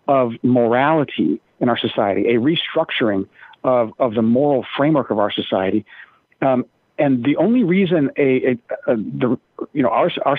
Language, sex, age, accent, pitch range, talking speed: English, male, 50-69, American, 115-140 Hz, 160 wpm